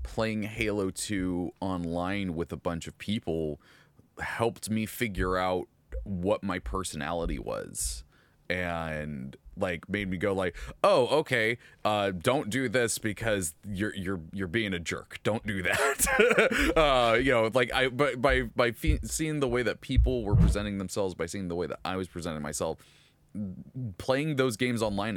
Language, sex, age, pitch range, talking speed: English, male, 20-39, 85-110 Hz, 160 wpm